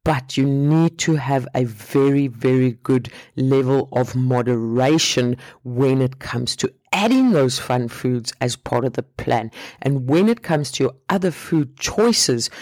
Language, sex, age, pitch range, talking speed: English, female, 50-69, 130-180 Hz, 160 wpm